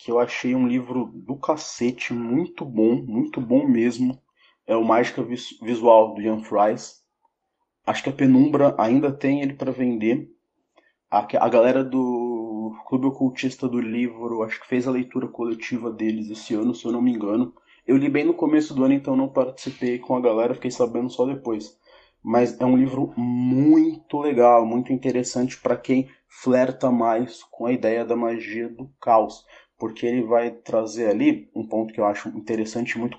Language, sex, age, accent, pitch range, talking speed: English, male, 20-39, Brazilian, 115-140 Hz, 180 wpm